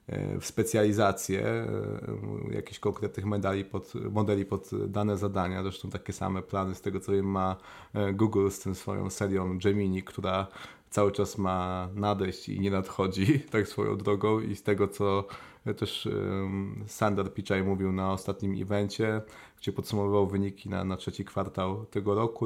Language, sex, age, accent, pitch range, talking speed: Polish, male, 20-39, native, 95-110 Hz, 145 wpm